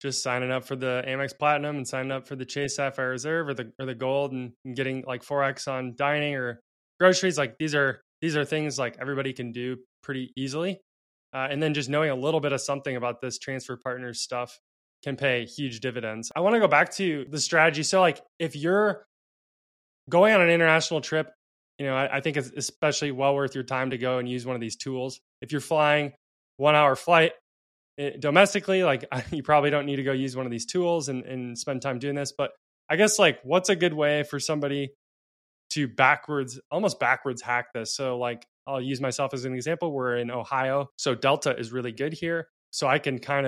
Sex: male